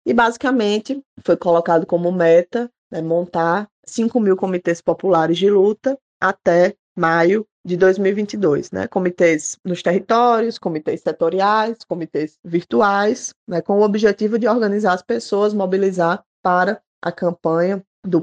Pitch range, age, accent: 165-195 Hz, 20-39, Brazilian